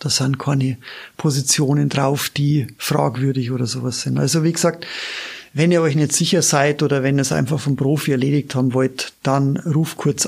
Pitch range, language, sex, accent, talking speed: 135-155 Hz, German, male, German, 185 wpm